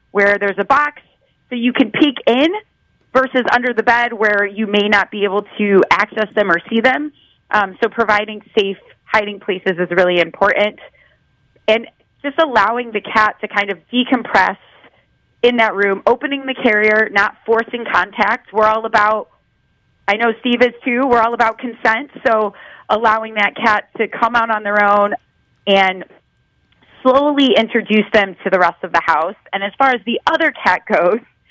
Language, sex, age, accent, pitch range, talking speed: English, female, 30-49, American, 205-245 Hz, 175 wpm